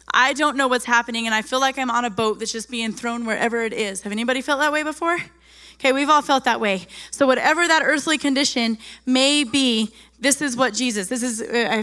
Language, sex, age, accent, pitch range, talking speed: English, female, 10-29, American, 210-255 Hz, 235 wpm